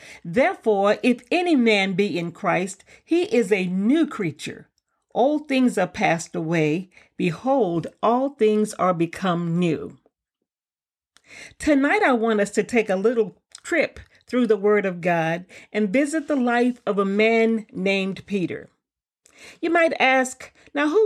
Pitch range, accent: 190-260 Hz, American